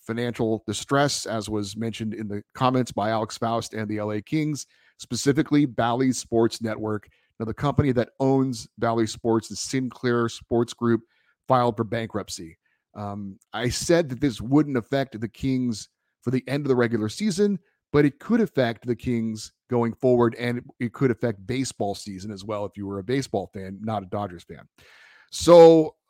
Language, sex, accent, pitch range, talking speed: English, male, American, 110-130 Hz, 175 wpm